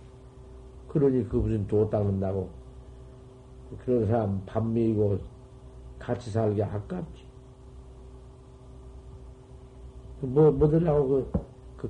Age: 50-69